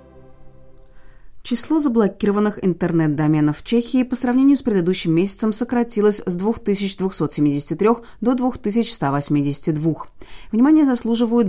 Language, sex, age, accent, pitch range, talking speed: Russian, female, 30-49, native, 160-230 Hz, 90 wpm